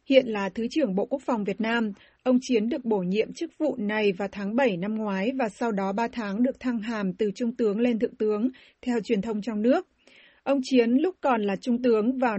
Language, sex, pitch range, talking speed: Vietnamese, female, 215-255 Hz, 235 wpm